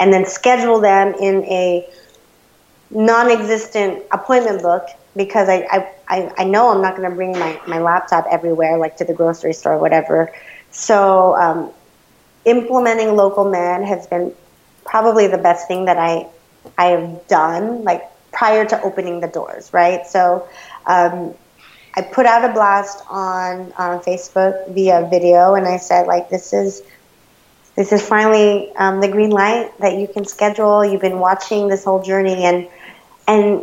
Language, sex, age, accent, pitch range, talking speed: English, female, 30-49, American, 175-205 Hz, 160 wpm